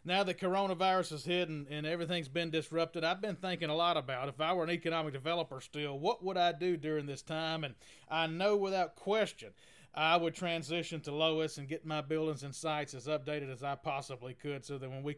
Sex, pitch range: male, 145-175 Hz